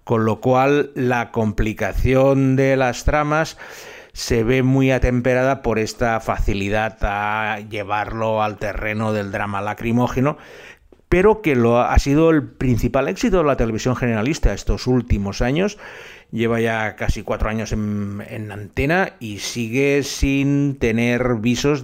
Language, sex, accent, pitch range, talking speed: Spanish, male, Spanish, 105-135 Hz, 135 wpm